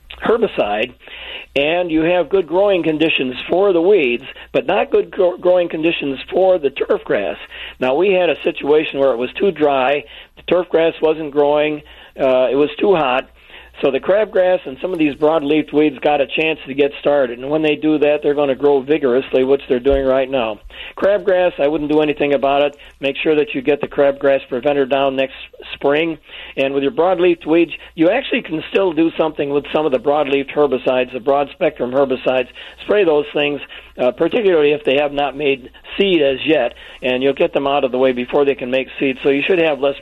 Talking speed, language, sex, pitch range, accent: 205 wpm, English, male, 135-165 Hz, American